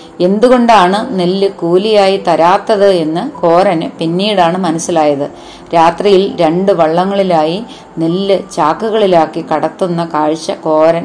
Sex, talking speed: female, 85 wpm